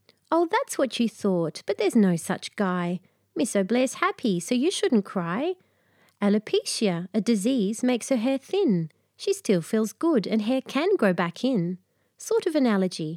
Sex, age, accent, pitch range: female, 30-49, Australian, 180-255 Hz